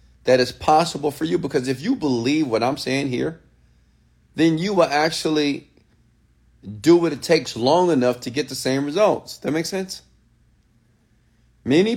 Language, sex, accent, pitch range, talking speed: English, male, American, 105-150 Hz, 160 wpm